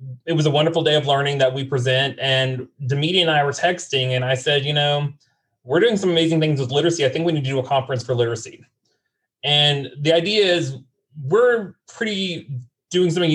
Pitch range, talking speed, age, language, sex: 135-170 Hz, 205 wpm, 30-49, English, male